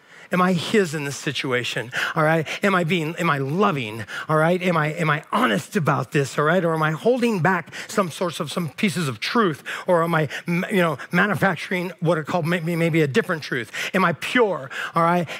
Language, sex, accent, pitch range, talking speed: English, male, American, 180-285 Hz, 215 wpm